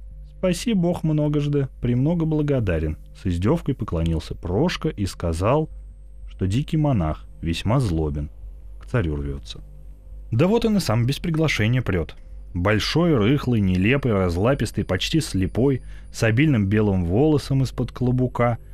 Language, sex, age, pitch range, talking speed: Russian, male, 30-49, 85-135 Hz, 125 wpm